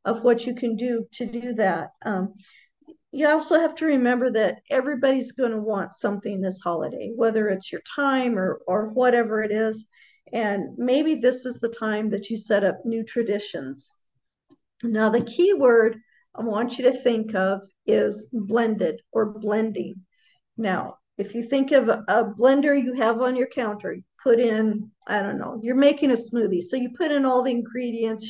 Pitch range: 220-255 Hz